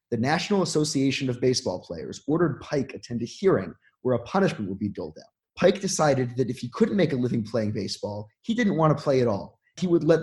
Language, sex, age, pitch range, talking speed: English, male, 20-39, 120-165 Hz, 230 wpm